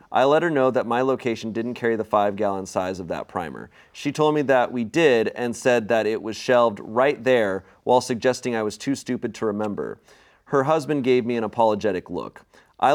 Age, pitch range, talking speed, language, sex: 30-49, 110-130 Hz, 215 wpm, English, male